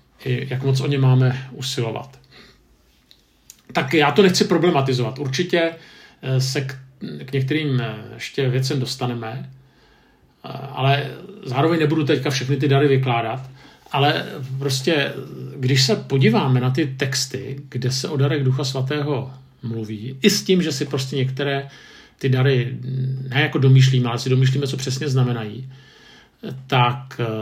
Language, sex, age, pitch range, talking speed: Czech, male, 50-69, 125-140 Hz, 135 wpm